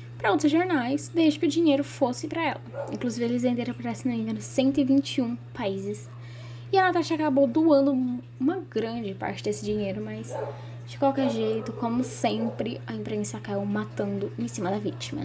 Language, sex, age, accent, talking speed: Portuguese, female, 10-29, Brazilian, 160 wpm